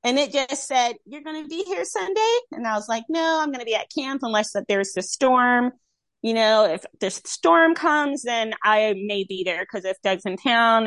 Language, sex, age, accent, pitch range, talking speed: English, female, 30-49, American, 210-320 Hz, 230 wpm